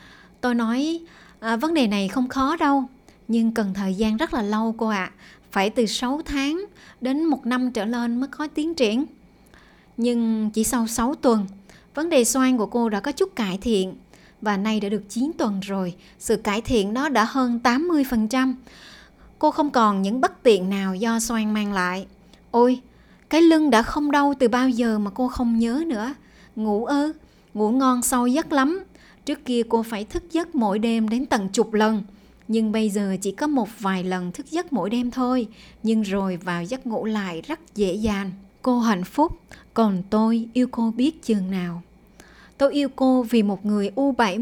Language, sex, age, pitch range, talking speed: Vietnamese, male, 20-39, 210-260 Hz, 195 wpm